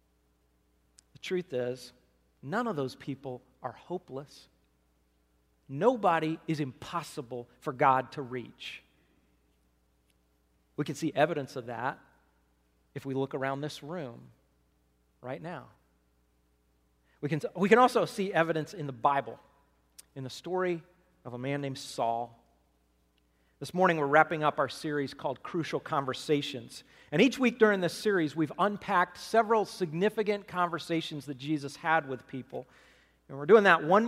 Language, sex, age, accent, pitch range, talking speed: English, male, 40-59, American, 120-180 Hz, 135 wpm